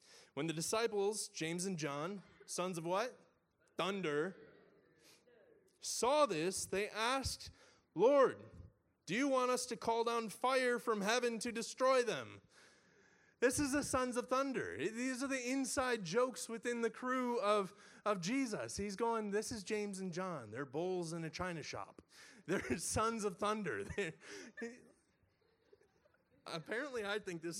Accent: American